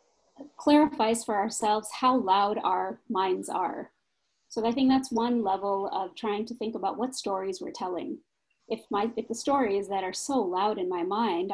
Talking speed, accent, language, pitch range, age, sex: 180 wpm, American, English, 200-245 Hz, 30-49, female